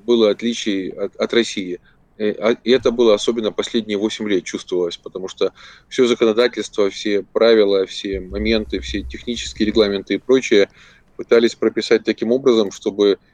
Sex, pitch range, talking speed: male, 100-120 Hz, 145 wpm